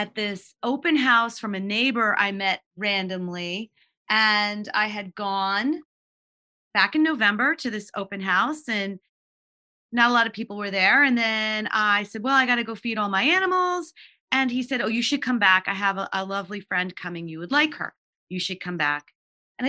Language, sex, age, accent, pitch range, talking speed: English, female, 30-49, American, 195-265 Hz, 200 wpm